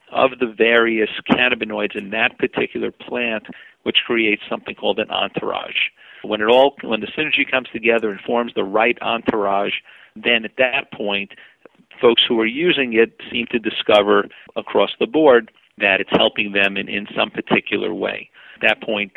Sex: male